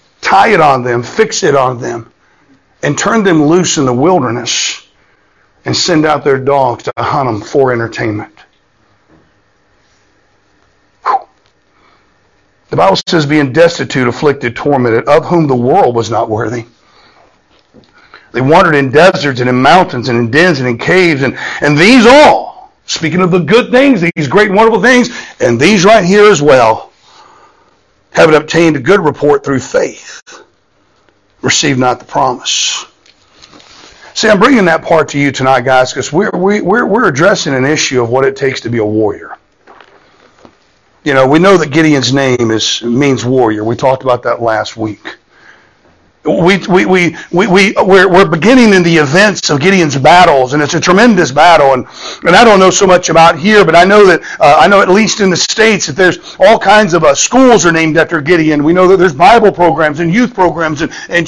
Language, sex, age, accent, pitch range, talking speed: English, male, 60-79, American, 130-195 Hz, 180 wpm